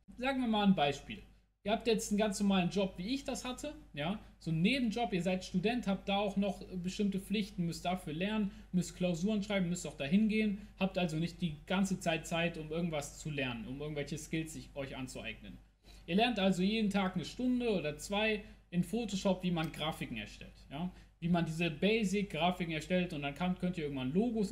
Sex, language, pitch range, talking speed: male, German, 160-195 Hz, 205 wpm